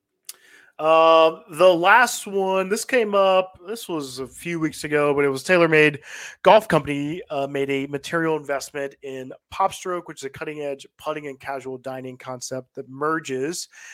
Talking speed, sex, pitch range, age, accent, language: 170 wpm, male, 130-175 Hz, 20-39, American, English